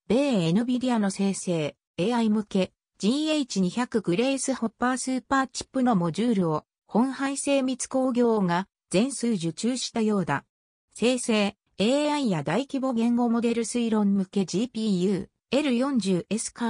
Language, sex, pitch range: Japanese, female, 185-260 Hz